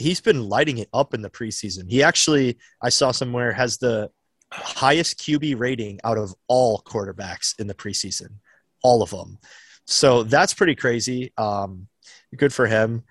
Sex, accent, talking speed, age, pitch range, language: male, American, 165 wpm, 20-39, 105-130 Hz, English